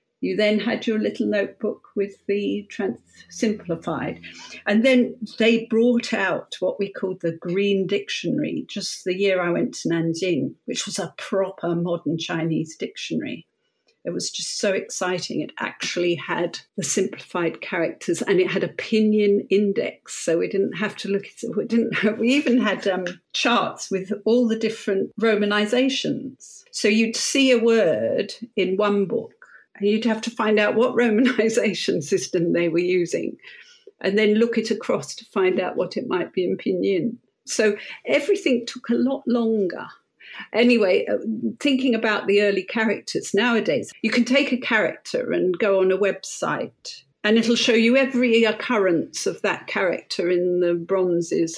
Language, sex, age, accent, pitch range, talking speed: English, female, 50-69, British, 195-240 Hz, 160 wpm